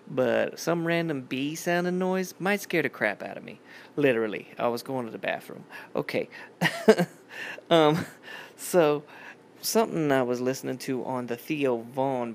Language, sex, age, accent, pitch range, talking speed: English, male, 20-39, American, 115-155 Hz, 150 wpm